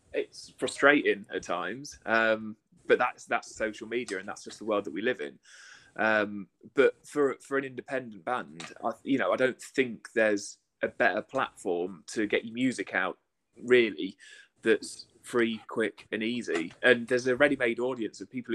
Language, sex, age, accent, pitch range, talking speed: English, male, 20-39, British, 105-135 Hz, 175 wpm